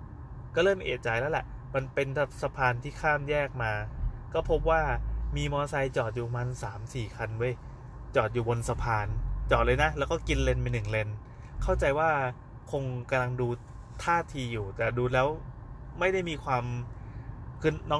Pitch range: 115-135 Hz